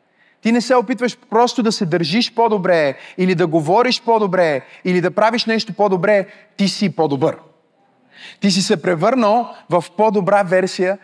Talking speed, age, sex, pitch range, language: 150 wpm, 30-49, male, 170-225 Hz, Bulgarian